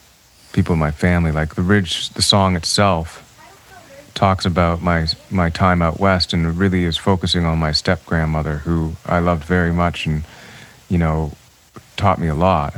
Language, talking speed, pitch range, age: English, 175 wpm, 85-105 Hz, 30-49